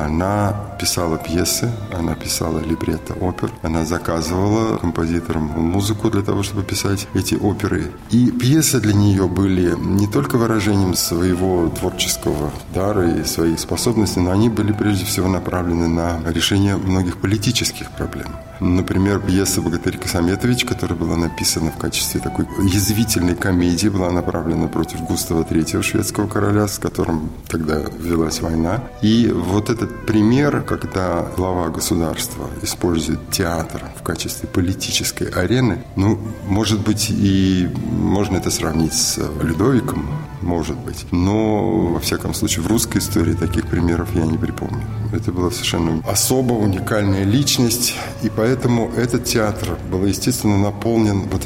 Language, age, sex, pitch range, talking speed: Russian, 20-39, male, 85-110 Hz, 135 wpm